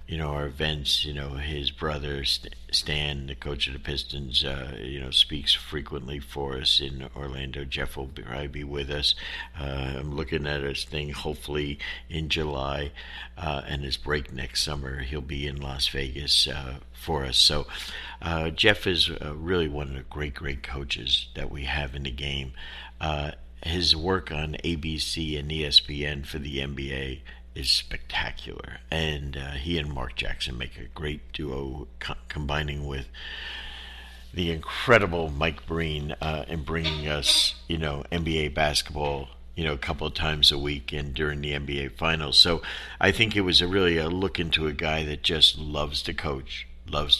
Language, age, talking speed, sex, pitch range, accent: English, 60-79, 175 wpm, male, 70-80 Hz, American